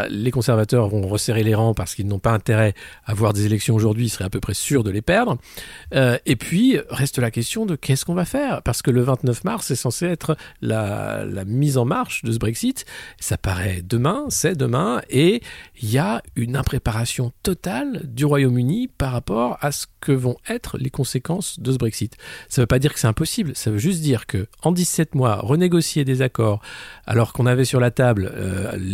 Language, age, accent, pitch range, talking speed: French, 50-69, French, 110-140 Hz, 215 wpm